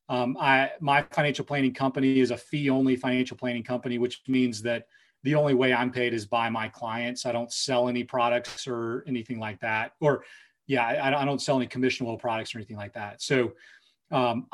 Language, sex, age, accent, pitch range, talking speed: English, male, 30-49, American, 120-140 Hz, 200 wpm